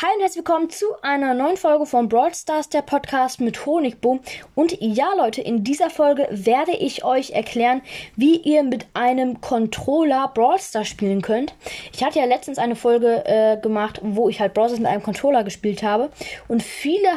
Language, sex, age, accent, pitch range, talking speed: German, female, 20-39, German, 220-285 Hz, 185 wpm